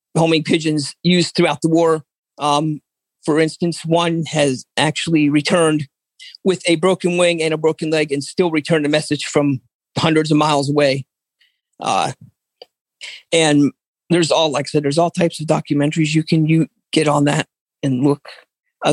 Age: 40-59